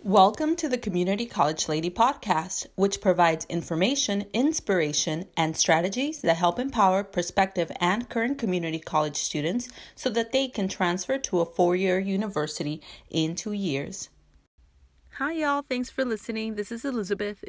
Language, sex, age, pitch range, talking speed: English, female, 30-49, 175-225 Hz, 150 wpm